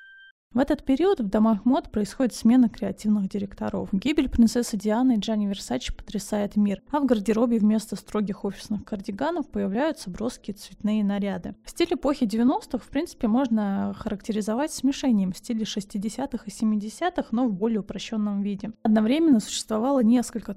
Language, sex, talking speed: Russian, female, 150 wpm